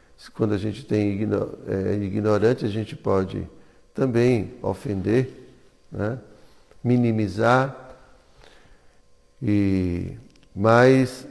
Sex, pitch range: male, 100-130 Hz